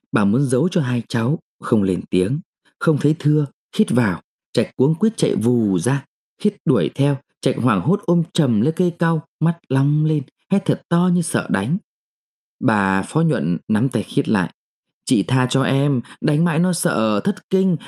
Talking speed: 190 wpm